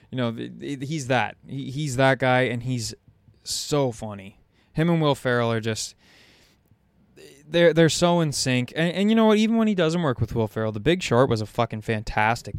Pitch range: 105-130 Hz